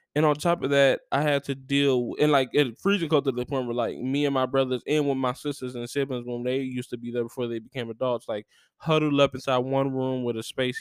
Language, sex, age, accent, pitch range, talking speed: English, male, 10-29, American, 120-140 Hz, 260 wpm